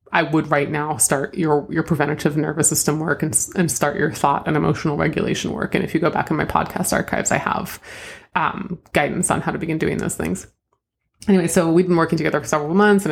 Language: English